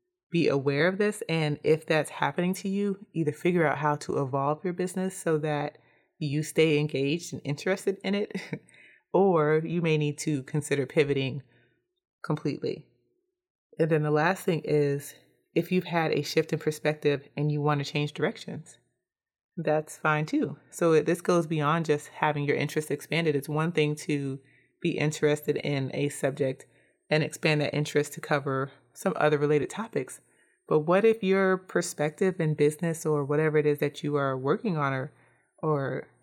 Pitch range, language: 145-170 Hz, English